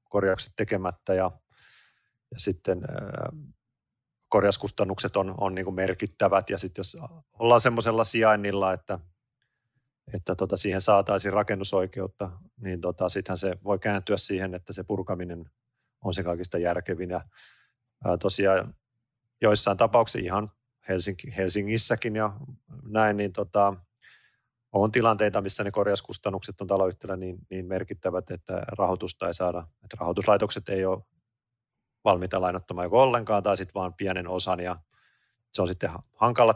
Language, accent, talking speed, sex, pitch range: Finnish, native, 130 wpm, male, 95-110 Hz